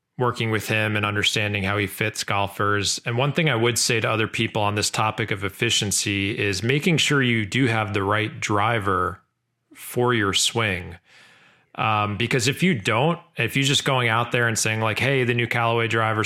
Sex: male